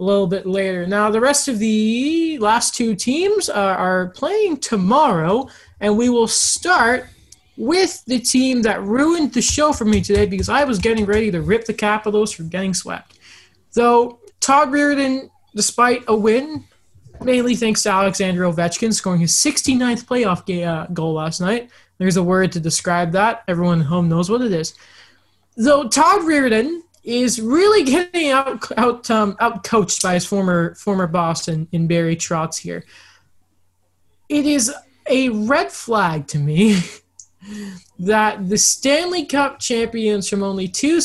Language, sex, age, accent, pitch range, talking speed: English, male, 20-39, American, 175-240 Hz, 160 wpm